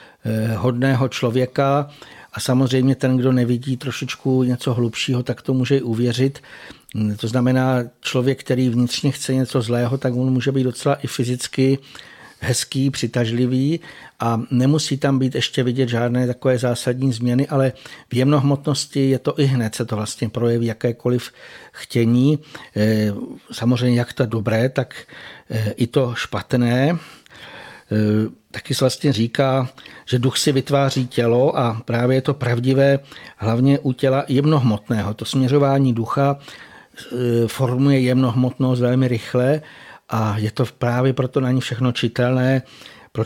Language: Czech